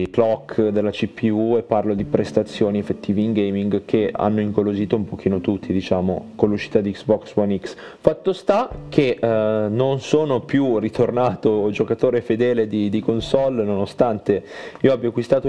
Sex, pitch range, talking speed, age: male, 100-125 Hz, 155 wpm, 30-49